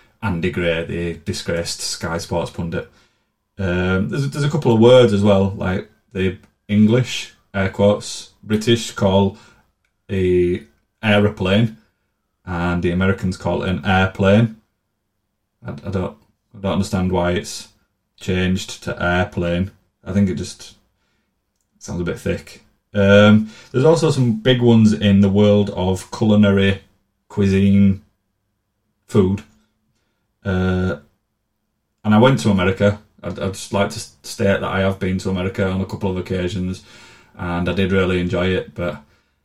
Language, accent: English, British